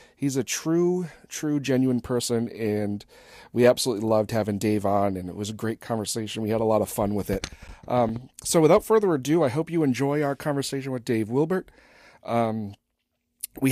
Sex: male